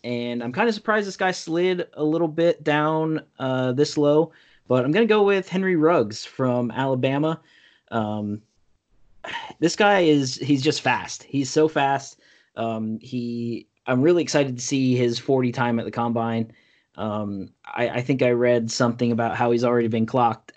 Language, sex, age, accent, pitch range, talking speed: English, male, 20-39, American, 120-145 Hz, 180 wpm